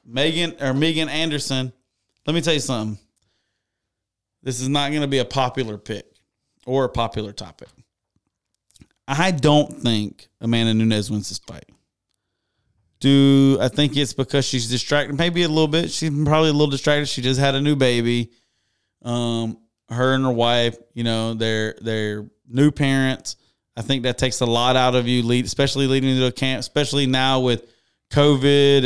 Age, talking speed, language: 30-49, 170 wpm, English